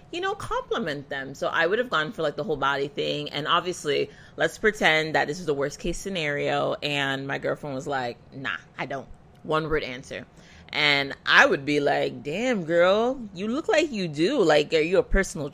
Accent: American